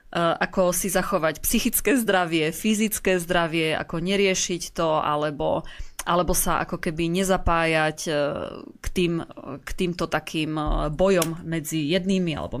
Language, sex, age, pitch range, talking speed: Slovak, female, 20-39, 165-190 Hz, 115 wpm